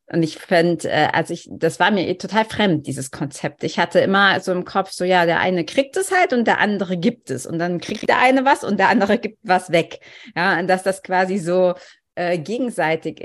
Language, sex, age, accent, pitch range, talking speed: German, female, 30-49, German, 170-200 Hz, 230 wpm